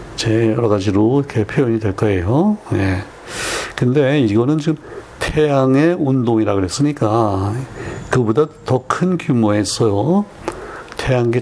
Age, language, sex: 60-79, Korean, male